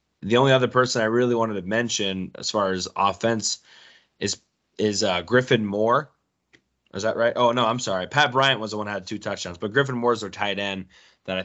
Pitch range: 95-120 Hz